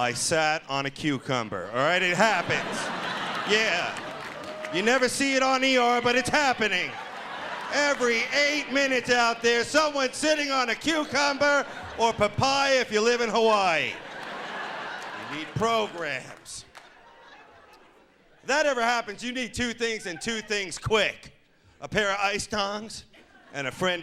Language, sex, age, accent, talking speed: English, male, 40-59, American, 145 wpm